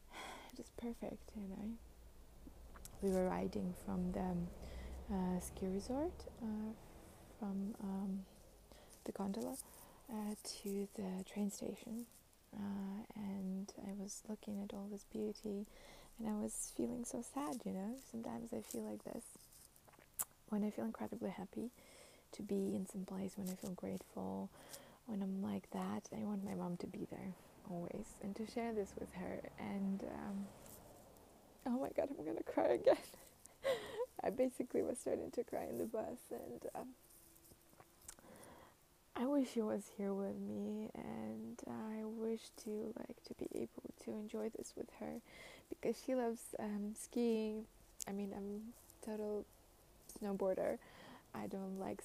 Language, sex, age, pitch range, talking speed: English, female, 20-39, 190-220 Hz, 150 wpm